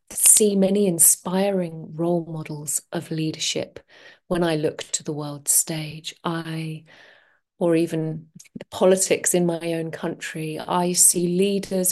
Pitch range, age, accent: 165-195 Hz, 30-49, British